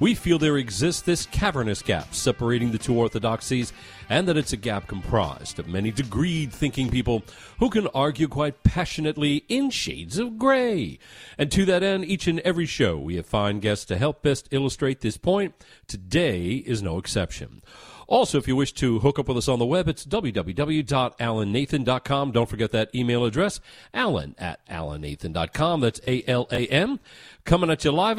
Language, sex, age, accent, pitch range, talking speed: English, male, 50-69, American, 110-170 Hz, 180 wpm